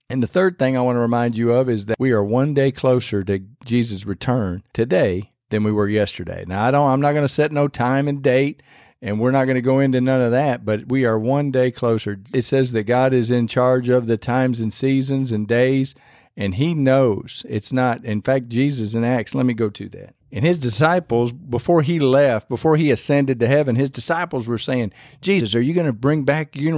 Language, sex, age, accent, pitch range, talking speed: English, male, 50-69, American, 110-135 Hz, 235 wpm